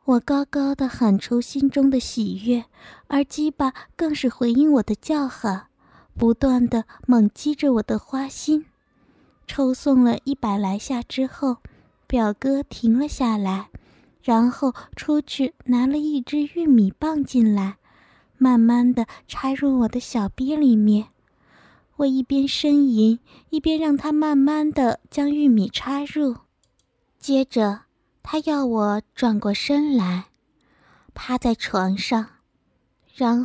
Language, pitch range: Chinese, 235-280 Hz